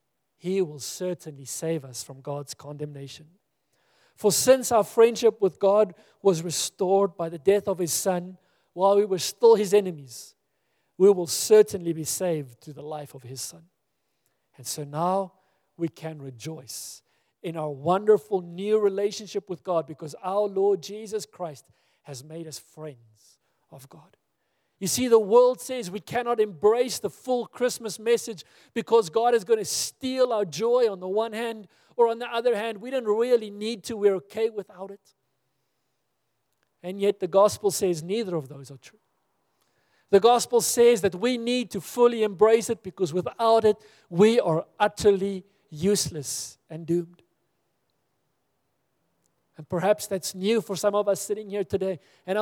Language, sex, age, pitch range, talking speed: English, male, 50-69, 165-220 Hz, 165 wpm